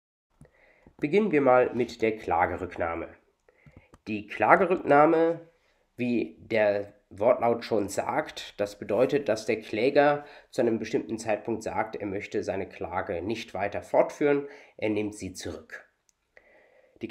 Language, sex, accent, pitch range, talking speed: German, male, German, 105-145 Hz, 125 wpm